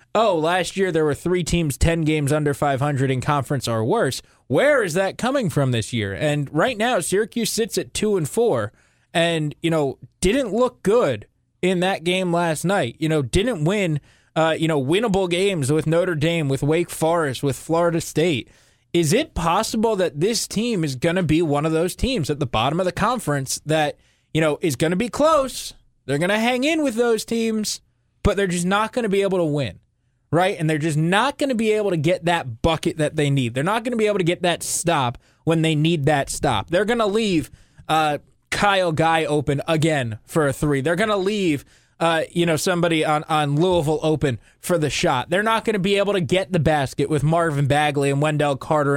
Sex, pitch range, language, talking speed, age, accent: male, 150-200 Hz, English, 220 wpm, 20-39, American